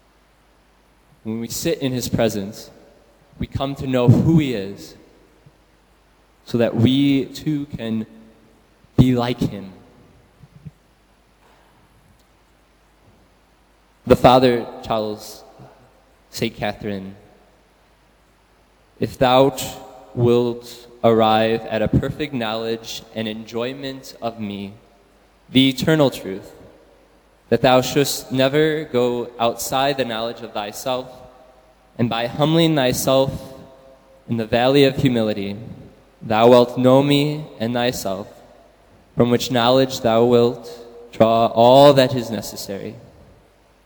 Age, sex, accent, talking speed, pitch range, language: 20-39, male, American, 105 wpm, 110-135 Hz, English